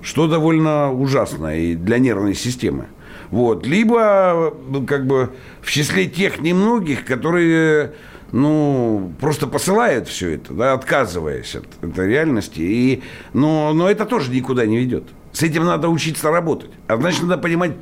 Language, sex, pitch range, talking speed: Russian, male, 130-180 Hz, 130 wpm